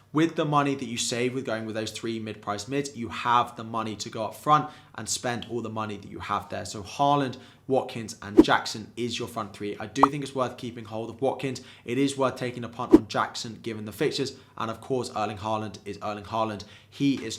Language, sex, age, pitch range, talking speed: English, male, 20-39, 110-130 Hz, 240 wpm